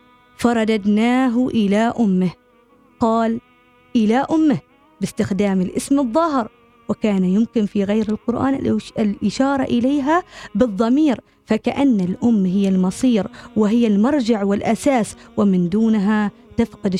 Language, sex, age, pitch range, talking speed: Arabic, female, 20-39, 205-255 Hz, 95 wpm